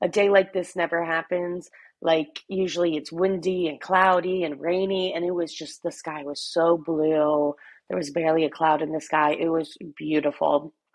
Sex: female